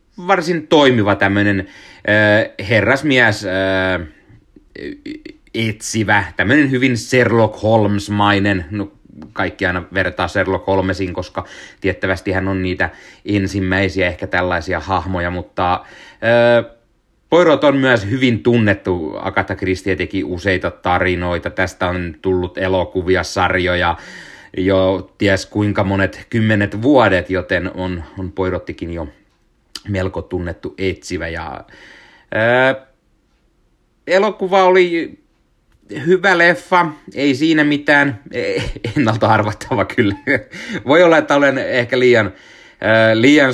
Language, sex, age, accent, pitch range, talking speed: Finnish, male, 30-49, native, 95-120 Hz, 100 wpm